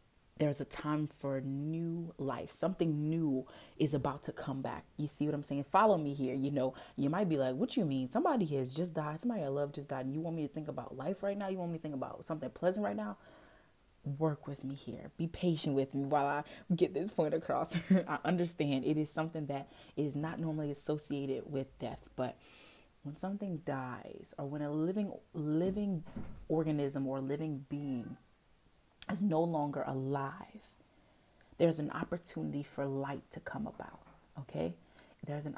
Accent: American